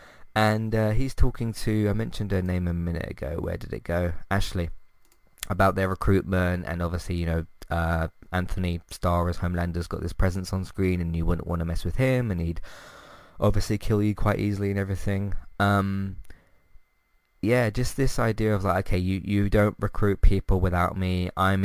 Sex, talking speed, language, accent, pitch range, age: male, 185 wpm, English, British, 90-110 Hz, 20-39